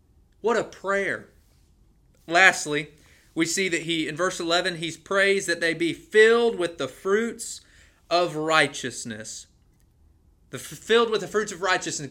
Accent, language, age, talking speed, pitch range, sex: American, English, 30-49, 145 wpm, 155-210 Hz, male